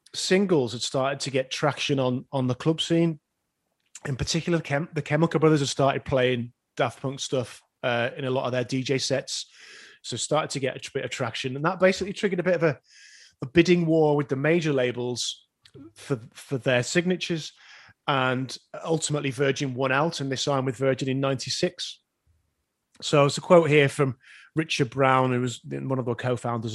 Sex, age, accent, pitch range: male, 30-49, British, 125-160 Hz